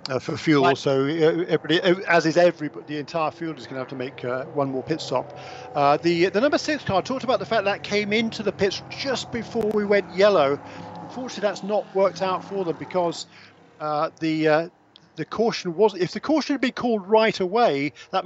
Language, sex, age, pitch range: English, male, 50-69, 145-185 Hz